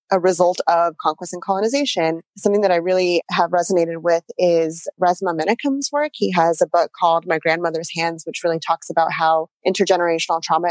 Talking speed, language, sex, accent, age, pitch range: 180 wpm, English, female, American, 20-39, 165-185 Hz